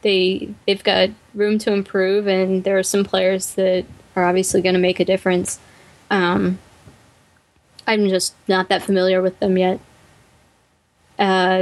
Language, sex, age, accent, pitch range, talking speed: English, female, 10-29, American, 185-205 Hz, 150 wpm